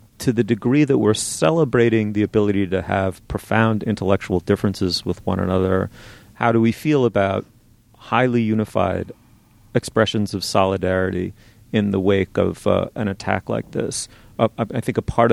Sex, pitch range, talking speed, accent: male, 100-115 Hz, 155 wpm, American